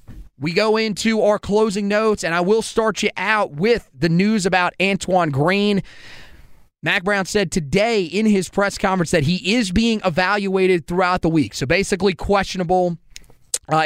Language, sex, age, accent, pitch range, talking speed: English, male, 30-49, American, 165-200 Hz, 165 wpm